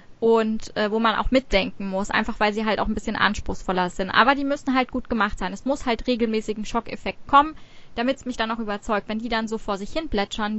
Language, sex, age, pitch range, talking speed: German, female, 20-39, 210-245 Hz, 245 wpm